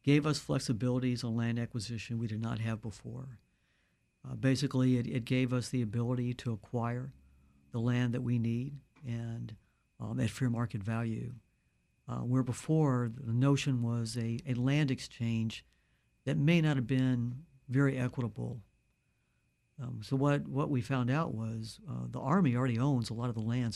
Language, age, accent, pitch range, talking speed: English, 60-79, American, 115-135 Hz, 170 wpm